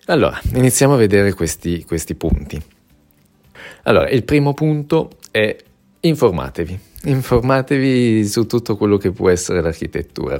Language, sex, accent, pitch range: Italian, male, native, 85-100 Hz